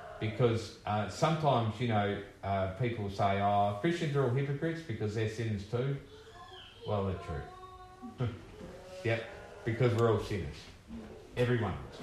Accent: Australian